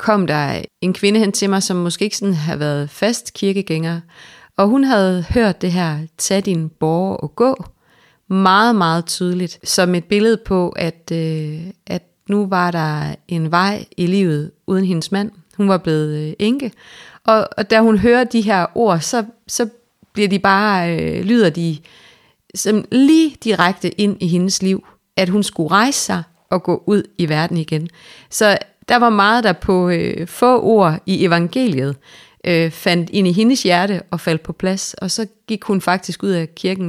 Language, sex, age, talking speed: Danish, female, 30-49, 180 wpm